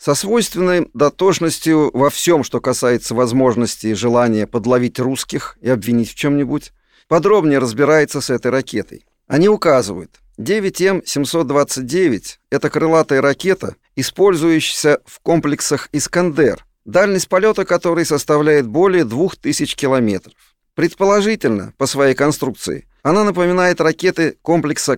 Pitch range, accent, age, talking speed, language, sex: 125-165 Hz, native, 40-59, 110 wpm, Russian, male